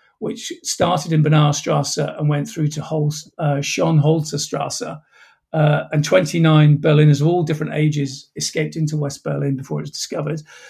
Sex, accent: male, British